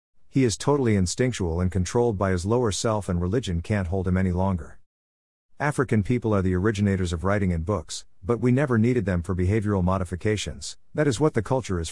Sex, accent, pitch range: male, American, 90-115 Hz